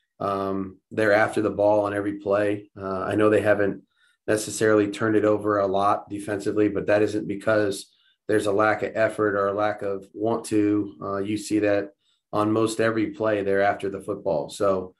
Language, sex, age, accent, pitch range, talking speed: English, male, 30-49, American, 100-110 Hz, 190 wpm